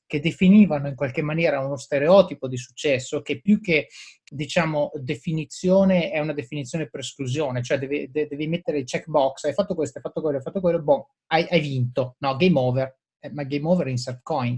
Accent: native